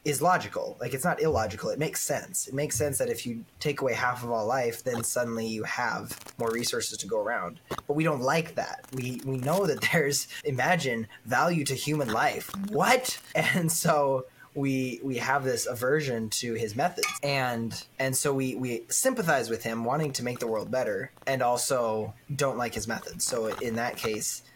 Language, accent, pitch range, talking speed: English, American, 115-150 Hz, 195 wpm